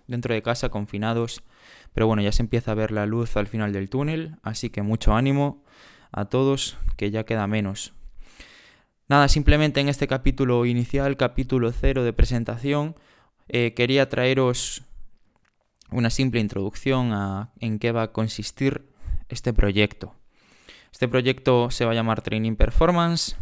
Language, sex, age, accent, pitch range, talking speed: Spanish, male, 20-39, Spanish, 110-130 Hz, 150 wpm